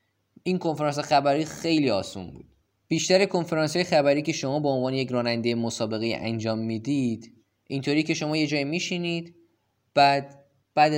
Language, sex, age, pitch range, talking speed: Persian, male, 20-39, 115-150 Hz, 140 wpm